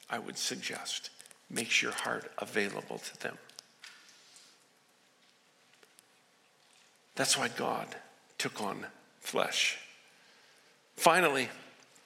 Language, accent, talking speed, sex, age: English, American, 80 wpm, male, 50-69